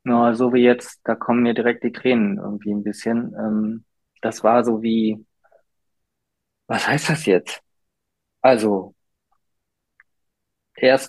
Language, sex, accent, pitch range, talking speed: German, male, German, 110-125 Hz, 125 wpm